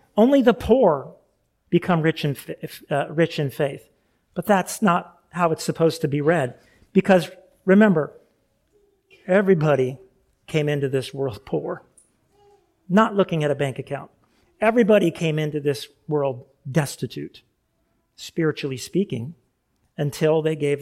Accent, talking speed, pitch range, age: American, 120 wpm, 150-190 Hz, 40-59